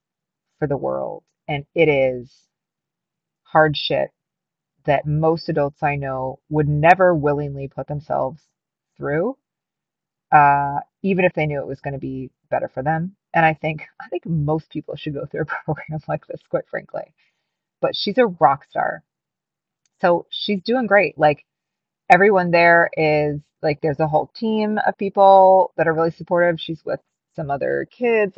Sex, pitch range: female, 150-175 Hz